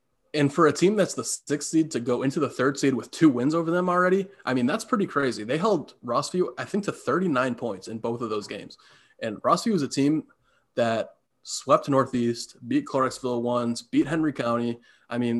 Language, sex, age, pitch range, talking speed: English, male, 20-39, 115-140 Hz, 210 wpm